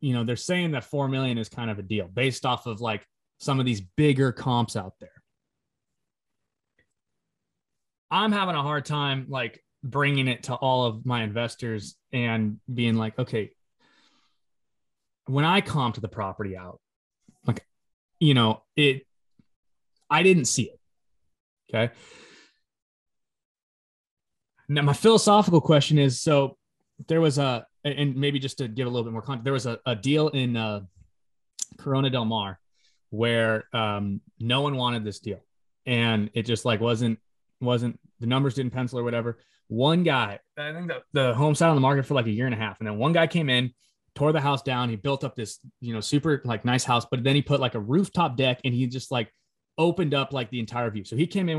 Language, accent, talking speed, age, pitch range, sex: English, American, 190 wpm, 20-39, 115-145 Hz, male